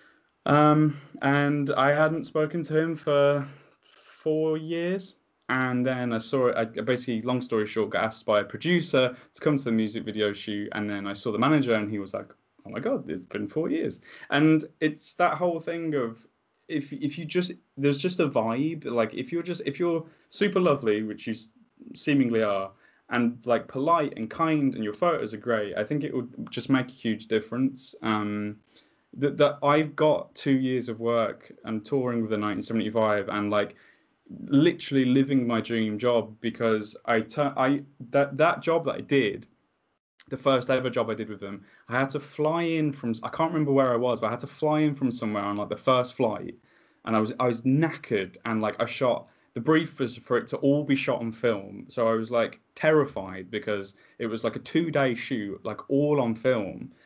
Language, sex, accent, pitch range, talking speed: English, male, British, 115-150 Hz, 205 wpm